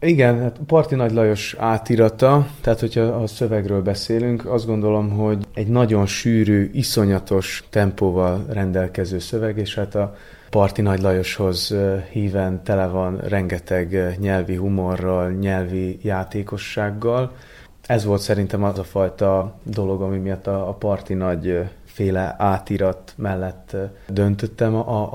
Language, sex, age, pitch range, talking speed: Hungarian, male, 20-39, 95-105 Hz, 130 wpm